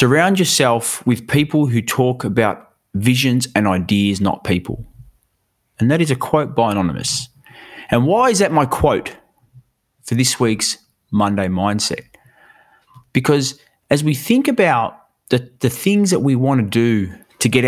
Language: English